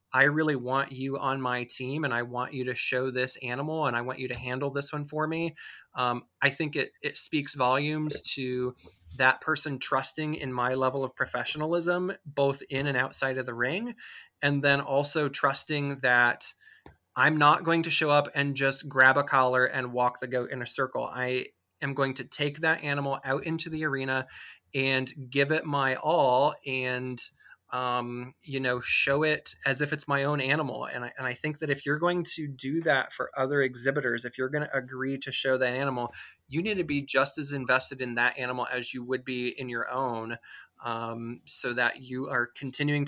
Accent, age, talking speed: American, 20-39, 200 wpm